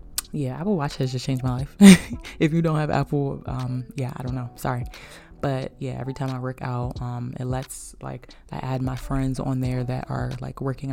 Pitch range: 125-140 Hz